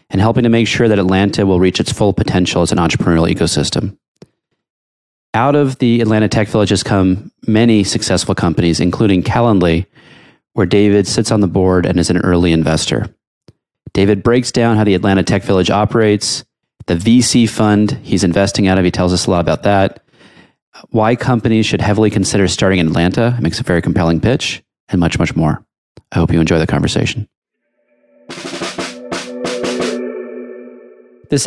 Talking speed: 170 wpm